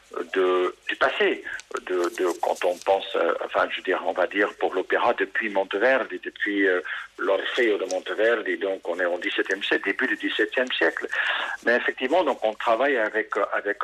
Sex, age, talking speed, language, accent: male, 60-79, 175 wpm, Italian, French